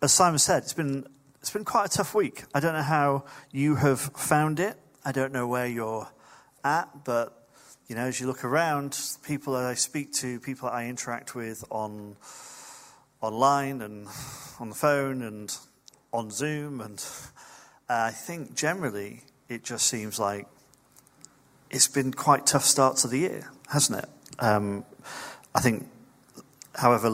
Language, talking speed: English, 160 wpm